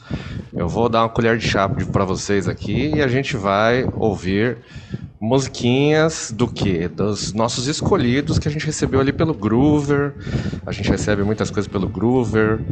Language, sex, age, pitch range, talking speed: Portuguese, male, 30-49, 95-125 Hz, 165 wpm